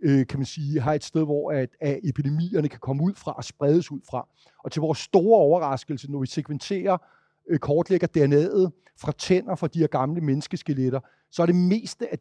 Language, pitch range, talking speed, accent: Danish, 135-175 Hz, 195 wpm, native